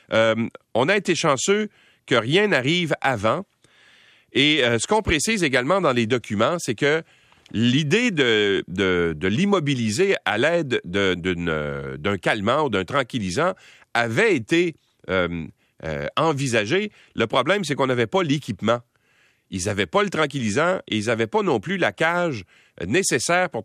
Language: French